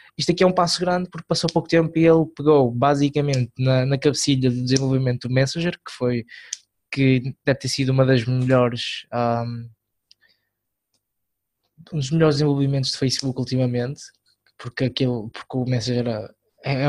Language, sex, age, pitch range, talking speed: Portuguese, male, 20-39, 120-135 Hz, 160 wpm